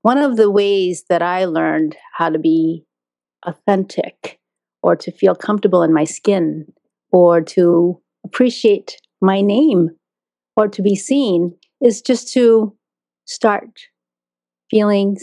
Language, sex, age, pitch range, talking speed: English, female, 30-49, 155-215 Hz, 125 wpm